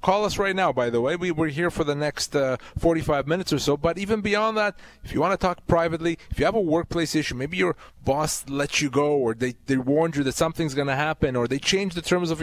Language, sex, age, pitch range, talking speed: English, male, 30-49, 130-170 Hz, 270 wpm